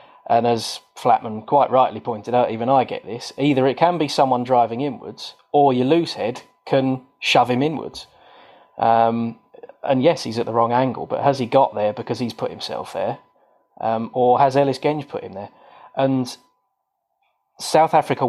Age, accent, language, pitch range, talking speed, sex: 20-39, British, English, 115-140 Hz, 180 wpm, male